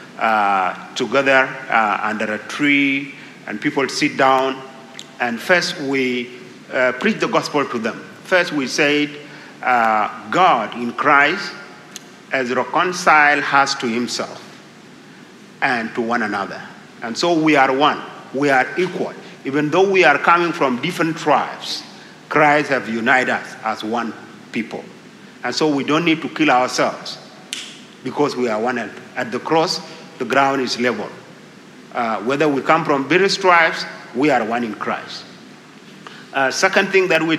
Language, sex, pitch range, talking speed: English, male, 130-165 Hz, 155 wpm